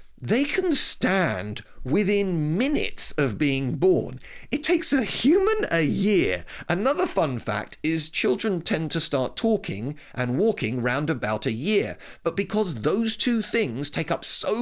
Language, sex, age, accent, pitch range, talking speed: English, male, 40-59, British, 120-170 Hz, 150 wpm